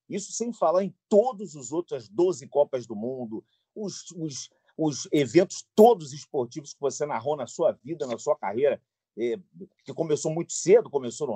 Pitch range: 130-175 Hz